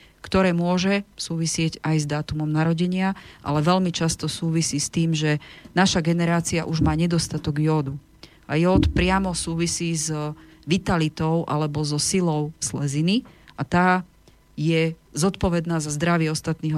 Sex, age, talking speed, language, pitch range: female, 40-59, 130 wpm, Slovak, 150-170 Hz